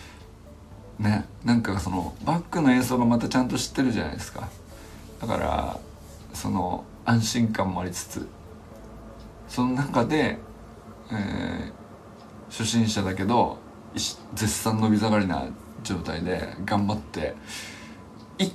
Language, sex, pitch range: Japanese, male, 85-110 Hz